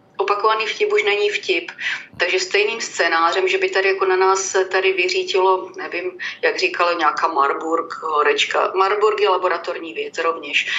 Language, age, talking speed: Slovak, 30-49, 150 wpm